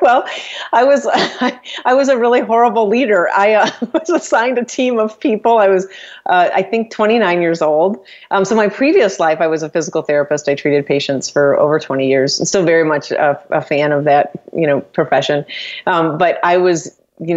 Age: 30-49